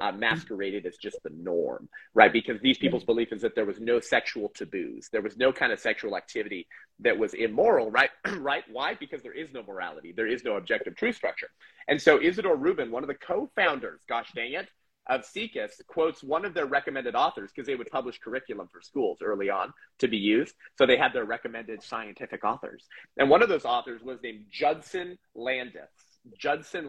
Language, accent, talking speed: English, American, 205 wpm